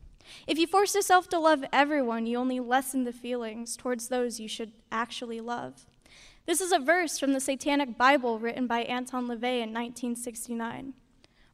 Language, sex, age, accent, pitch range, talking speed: English, female, 10-29, American, 240-295 Hz, 165 wpm